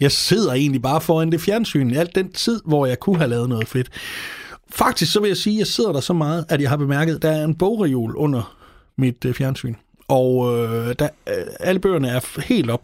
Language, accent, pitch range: Danish, native, 130-170 Hz